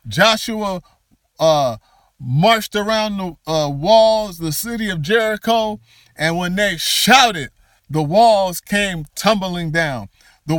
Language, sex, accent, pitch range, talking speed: English, male, American, 165-225 Hz, 120 wpm